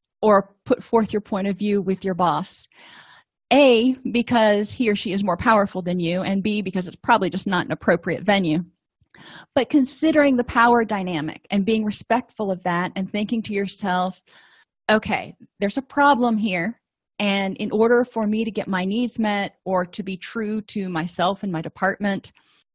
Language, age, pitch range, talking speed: English, 30-49, 190-235 Hz, 180 wpm